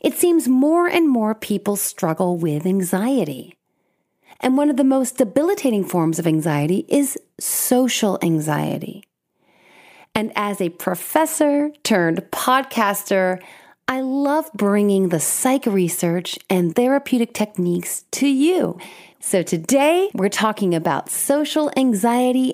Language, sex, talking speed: English, female, 120 wpm